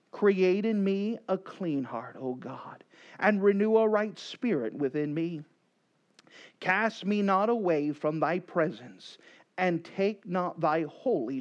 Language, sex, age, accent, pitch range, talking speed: English, male, 40-59, American, 145-210 Hz, 140 wpm